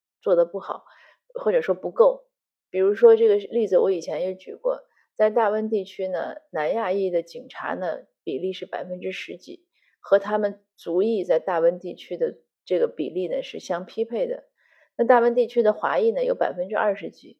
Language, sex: Chinese, female